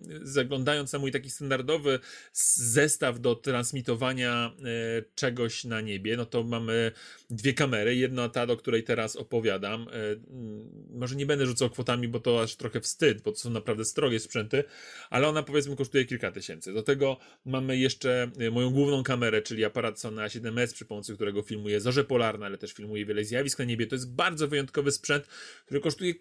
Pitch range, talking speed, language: 115-145 Hz, 170 wpm, Polish